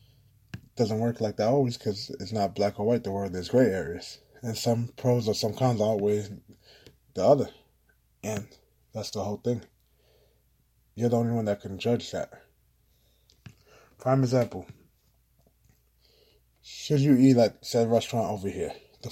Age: 20-39